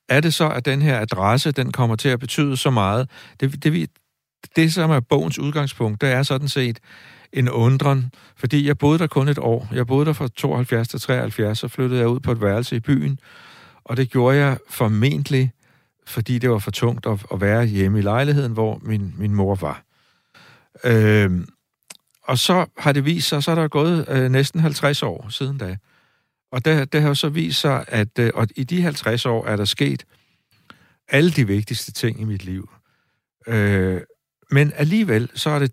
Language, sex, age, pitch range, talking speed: Danish, male, 60-79, 110-145 Hz, 200 wpm